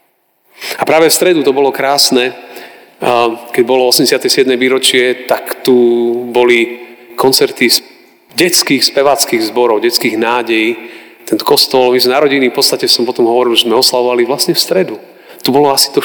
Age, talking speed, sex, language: 40-59, 150 wpm, male, Slovak